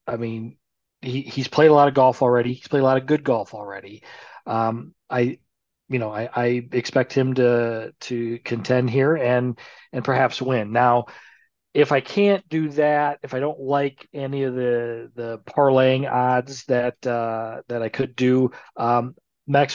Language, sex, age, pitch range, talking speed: English, male, 40-59, 120-145 Hz, 175 wpm